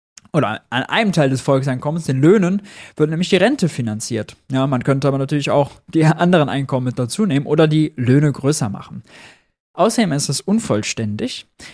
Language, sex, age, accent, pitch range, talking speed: German, male, 20-39, German, 130-175 Hz, 175 wpm